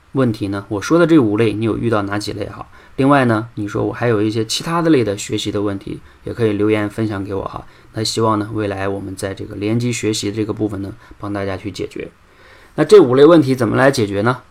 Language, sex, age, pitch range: Chinese, male, 20-39, 105-120 Hz